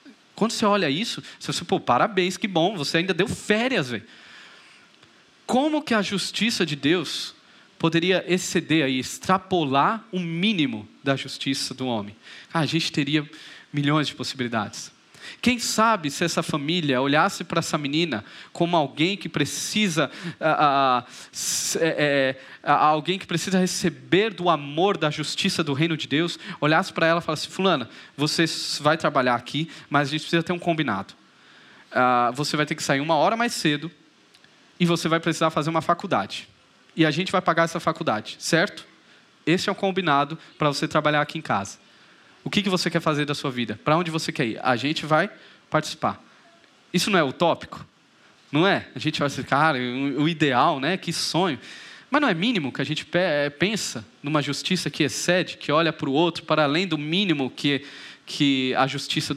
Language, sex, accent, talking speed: Portuguese, male, Brazilian, 180 wpm